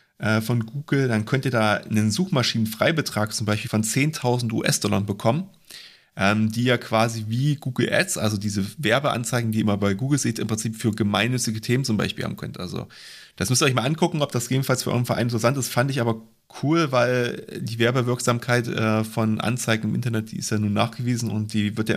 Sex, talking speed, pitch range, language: male, 200 wpm, 105-120 Hz, German